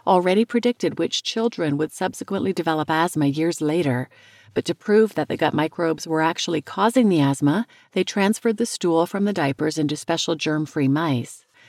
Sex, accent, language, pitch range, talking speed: female, American, English, 155-200 Hz, 170 wpm